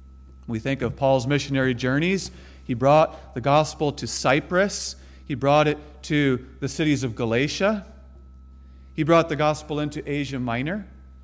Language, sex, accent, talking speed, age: English, male, American, 145 wpm, 40-59